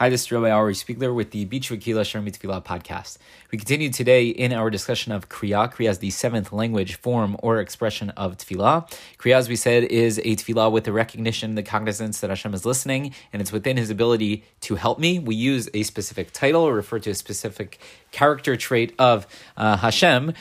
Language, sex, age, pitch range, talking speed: English, male, 30-49, 105-125 Hz, 205 wpm